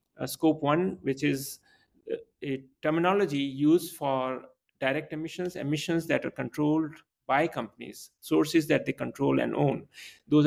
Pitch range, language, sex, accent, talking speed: 135-165 Hz, English, male, Indian, 140 wpm